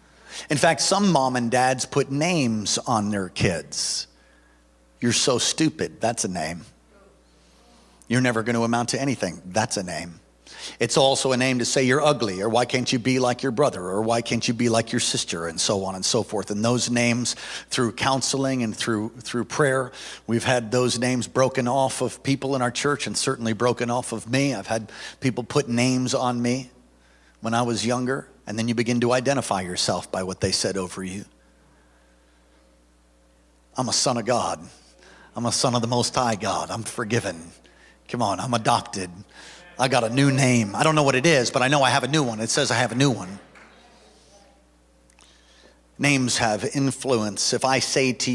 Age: 50-69